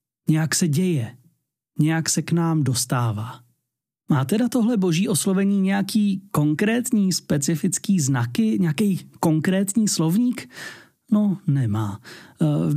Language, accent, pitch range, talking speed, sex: Czech, native, 145-190 Hz, 110 wpm, male